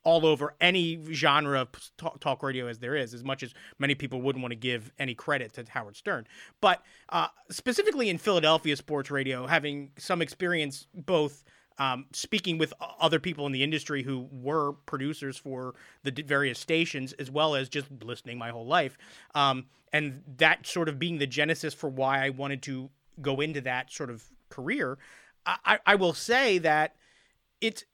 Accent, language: American, English